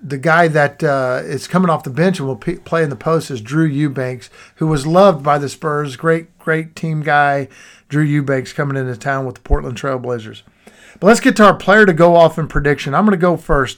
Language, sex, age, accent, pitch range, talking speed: English, male, 50-69, American, 140-180 Hz, 230 wpm